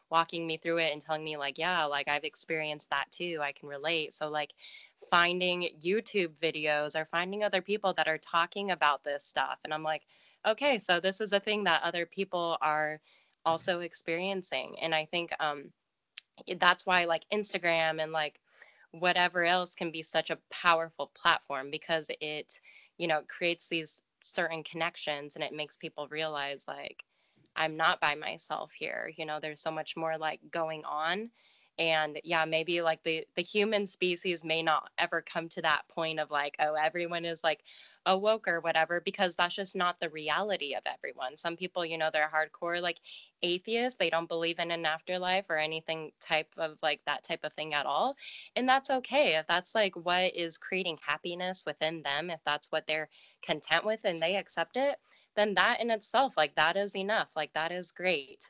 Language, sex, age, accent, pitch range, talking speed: English, female, 10-29, American, 155-185 Hz, 190 wpm